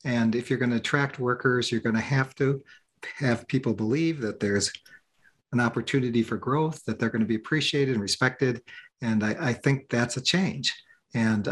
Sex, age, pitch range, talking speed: male, 40-59, 110-130 Hz, 175 wpm